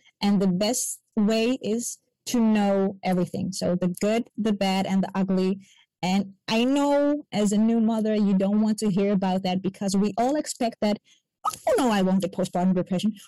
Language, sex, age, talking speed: English, female, 20-39, 190 wpm